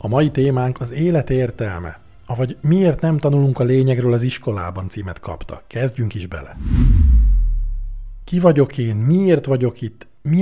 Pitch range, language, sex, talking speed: 110-140 Hz, Hungarian, male, 150 wpm